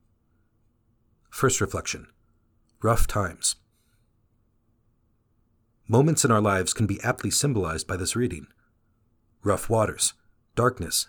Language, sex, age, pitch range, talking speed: English, male, 40-59, 100-115 Hz, 95 wpm